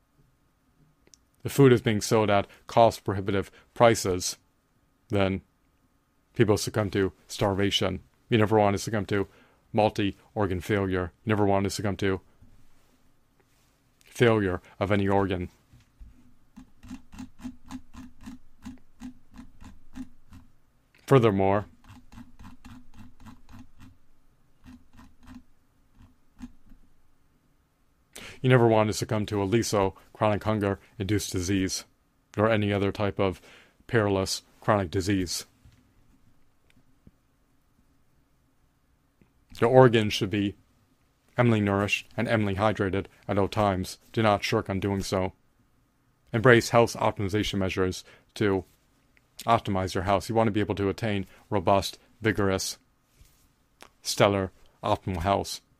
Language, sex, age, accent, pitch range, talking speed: English, male, 40-59, American, 95-115 Hz, 100 wpm